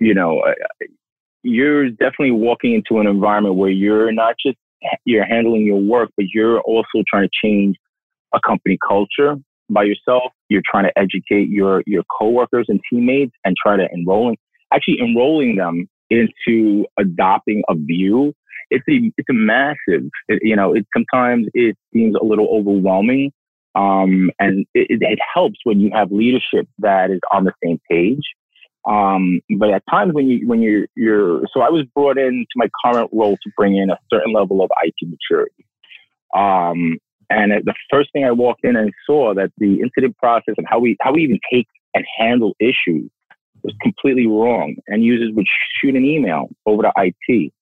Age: 30-49